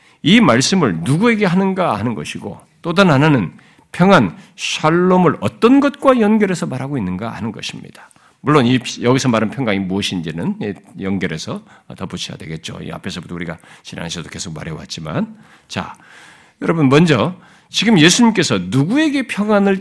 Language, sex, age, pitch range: Korean, male, 50-69, 125-200 Hz